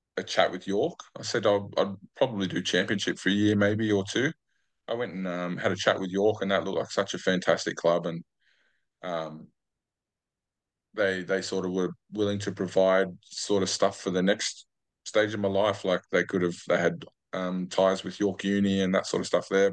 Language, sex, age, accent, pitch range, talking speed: English, male, 20-39, Australian, 90-100 Hz, 215 wpm